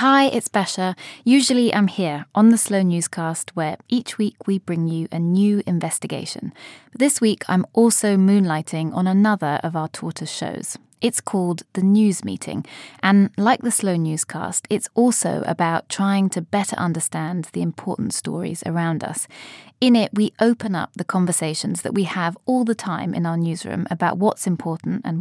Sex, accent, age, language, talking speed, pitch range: female, British, 20-39, English, 170 wpm, 170-215 Hz